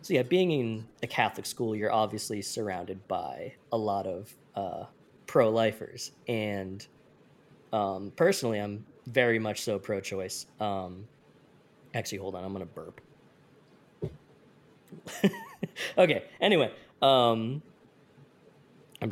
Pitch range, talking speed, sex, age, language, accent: 100-125 Hz, 110 wpm, male, 20-39, English, American